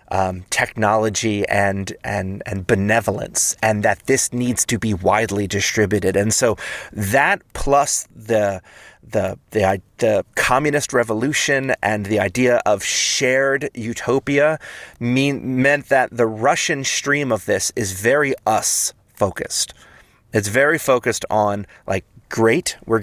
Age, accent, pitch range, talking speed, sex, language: 30-49, American, 100-125 Hz, 125 wpm, male, English